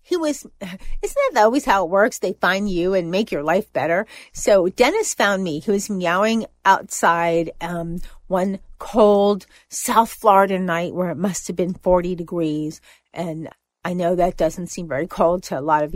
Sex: female